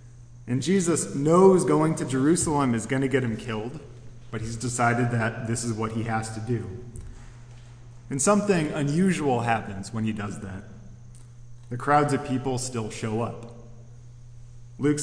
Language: English